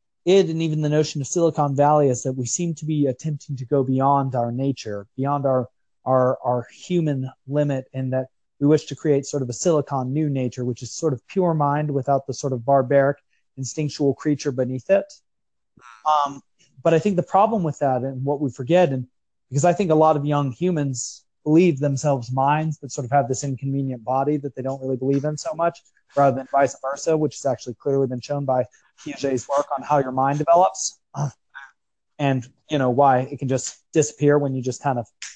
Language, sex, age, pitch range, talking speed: English, male, 30-49, 130-150 Hz, 210 wpm